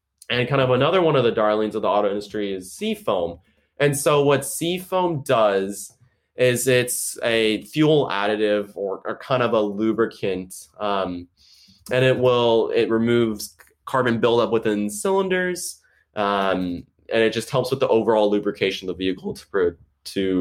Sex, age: male, 20-39